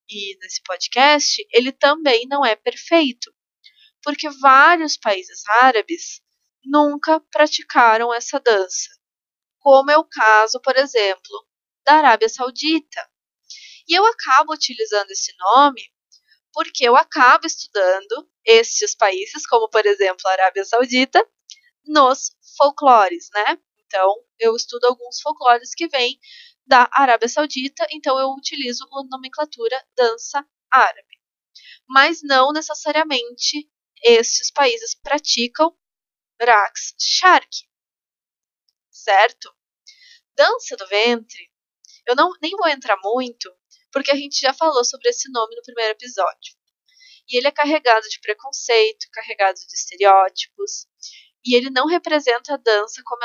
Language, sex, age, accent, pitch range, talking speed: Portuguese, female, 20-39, Brazilian, 235-330 Hz, 120 wpm